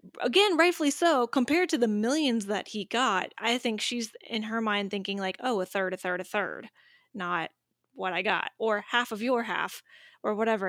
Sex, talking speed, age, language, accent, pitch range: female, 200 wpm, 10-29, English, American, 220-290 Hz